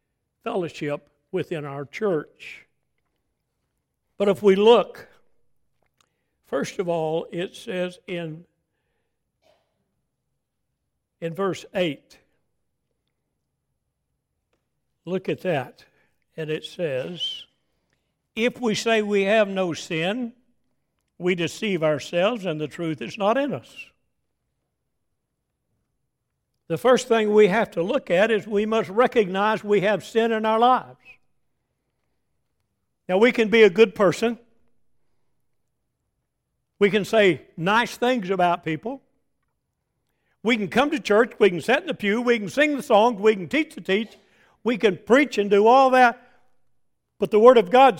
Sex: male